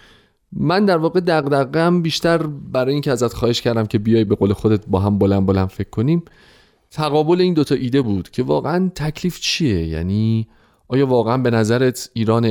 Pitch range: 100-125 Hz